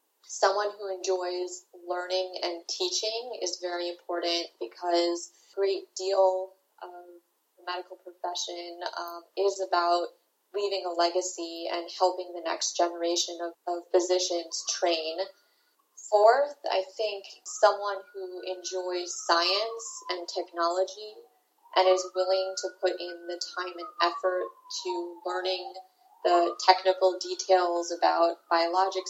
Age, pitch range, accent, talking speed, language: 20-39, 175-195 Hz, American, 120 wpm, English